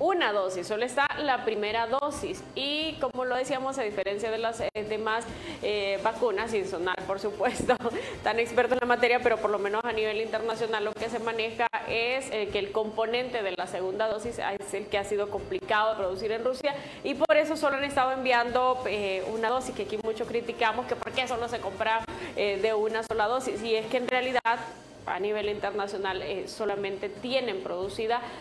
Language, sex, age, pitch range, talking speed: Spanish, female, 20-39, 205-250 Hz, 200 wpm